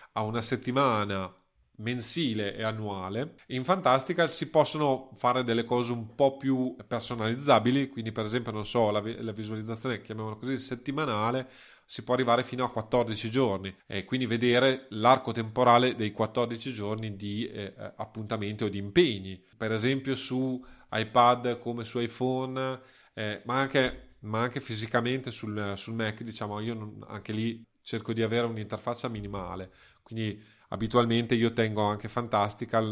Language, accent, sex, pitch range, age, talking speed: Italian, native, male, 105-125 Hz, 30-49, 155 wpm